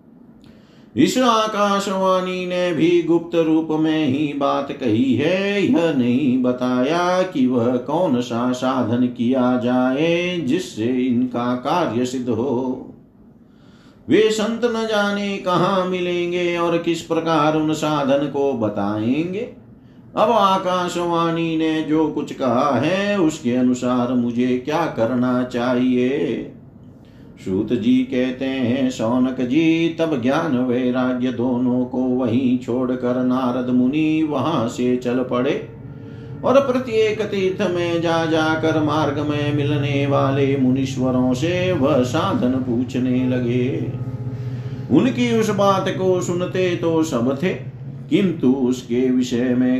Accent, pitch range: native, 125-175 Hz